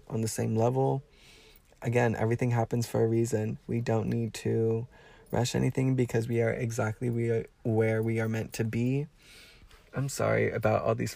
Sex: male